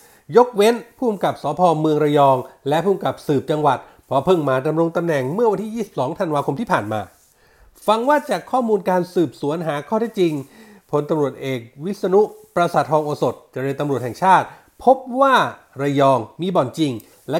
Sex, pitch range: male, 150-230 Hz